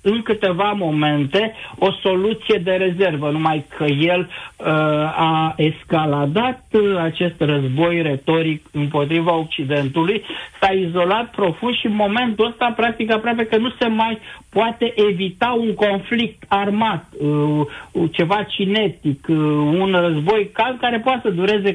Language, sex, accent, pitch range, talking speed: Romanian, male, native, 160-210 Hz, 130 wpm